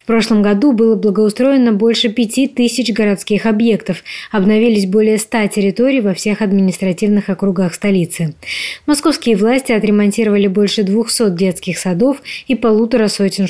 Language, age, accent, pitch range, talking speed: Russian, 20-39, native, 195-245 Hz, 125 wpm